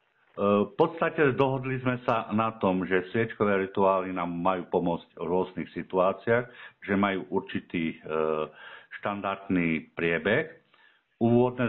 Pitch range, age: 90-115 Hz, 50-69